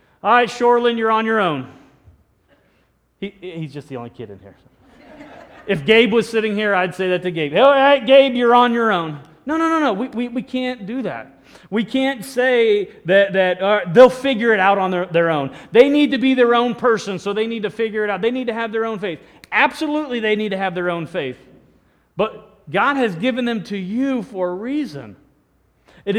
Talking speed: 220 wpm